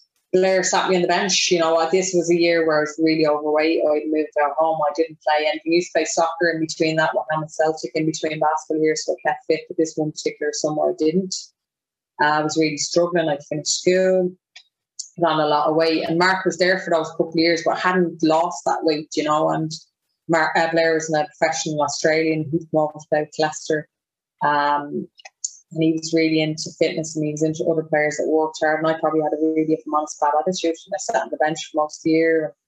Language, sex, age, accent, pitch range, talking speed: English, female, 20-39, Irish, 150-165 Hz, 235 wpm